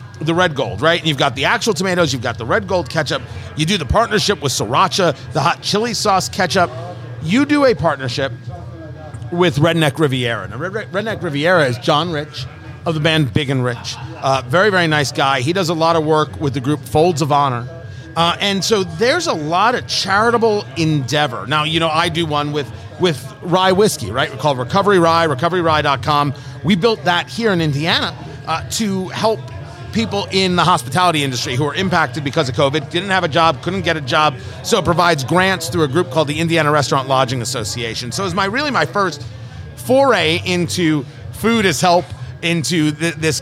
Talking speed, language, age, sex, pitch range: 195 wpm, English, 40-59, male, 135-180 Hz